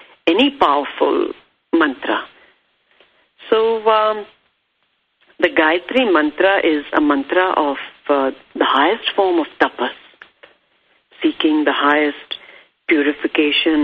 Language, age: English, 50-69